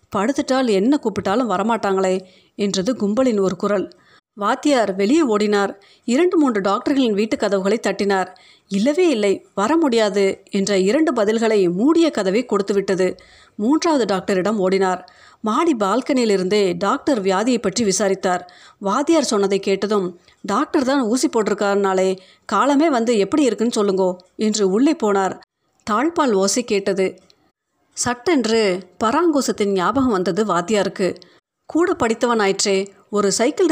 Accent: native